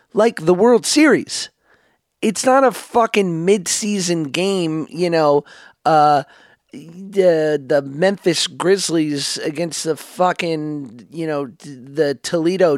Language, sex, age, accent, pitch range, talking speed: English, male, 30-49, American, 150-205 Hz, 115 wpm